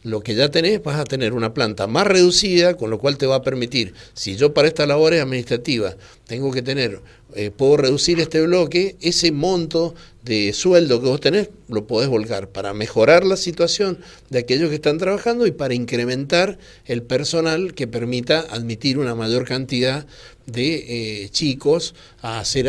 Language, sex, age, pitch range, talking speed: Spanish, male, 60-79, 115-160 Hz, 175 wpm